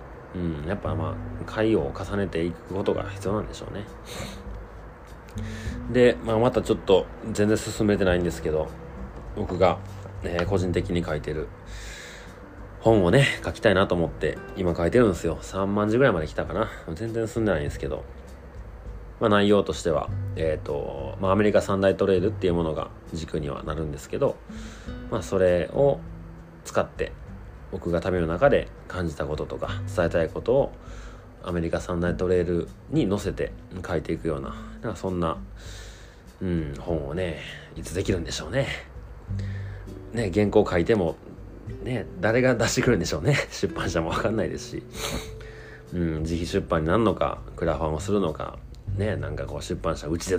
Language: Japanese